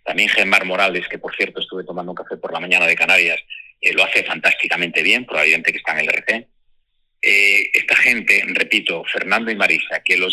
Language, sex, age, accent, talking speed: Spanish, male, 40-59, Spanish, 205 wpm